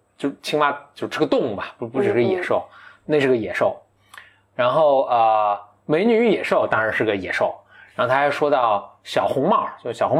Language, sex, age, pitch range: Chinese, male, 20-39, 105-145 Hz